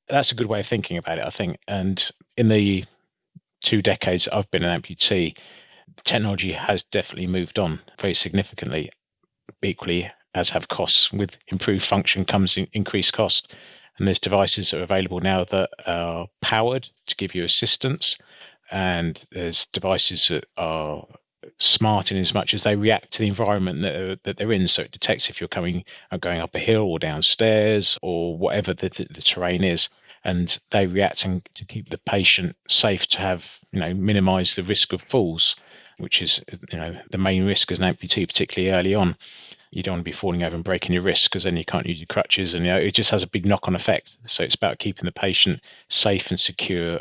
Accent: British